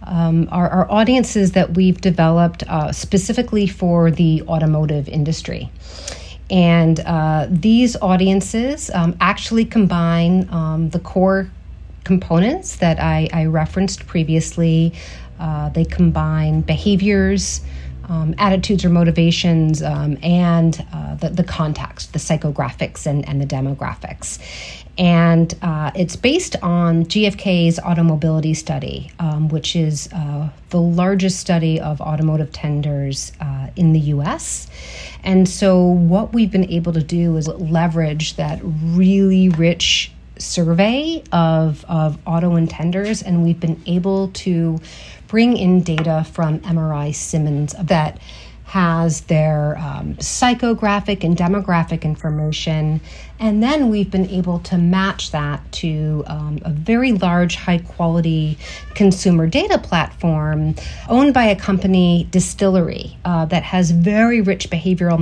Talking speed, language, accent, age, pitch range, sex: 125 wpm, English, American, 40-59, 155-185 Hz, female